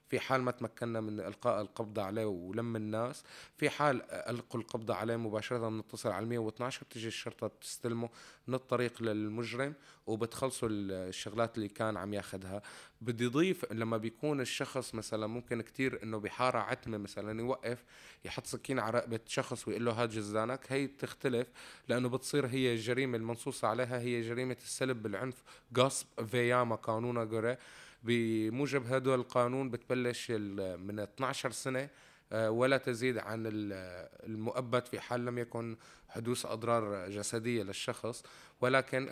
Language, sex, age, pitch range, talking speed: Arabic, male, 20-39, 110-130 Hz, 140 wpm